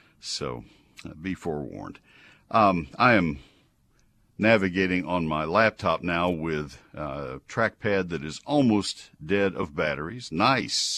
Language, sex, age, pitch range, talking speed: English, male, 60-79, 75-115 Hz, 125 wpm